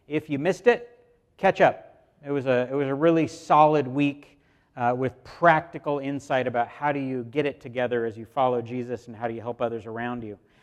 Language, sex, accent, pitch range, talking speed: English, male, American, 130-170 Hz, 215 wpm